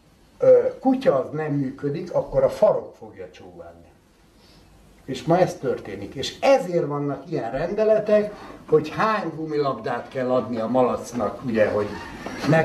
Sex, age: male, 60-79